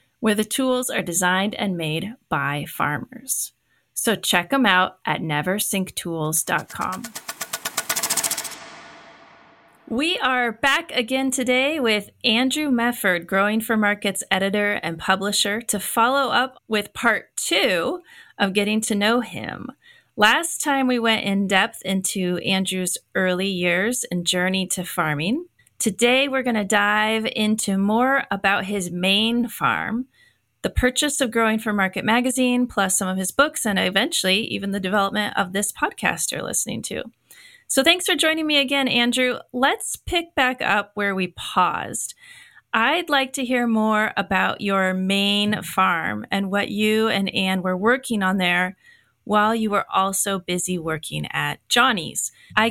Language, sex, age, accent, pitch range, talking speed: English, female, 30-49, American, 190-250 Hz, 145 wpm